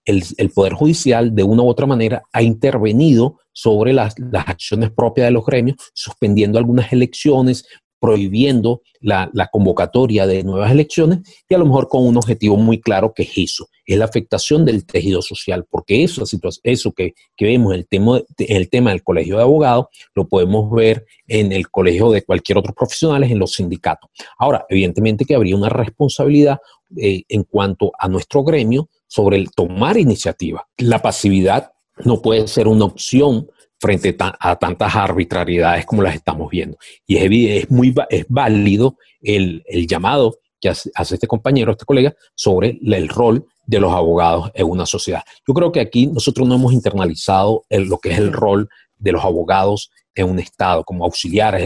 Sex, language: male, Spanish